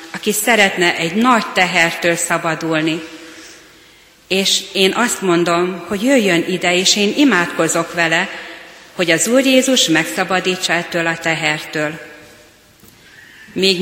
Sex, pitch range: female, 160-190 Hz